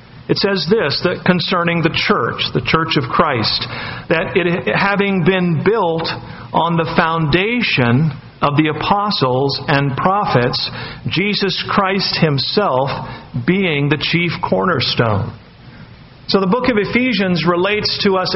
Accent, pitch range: American, 145-185 Hz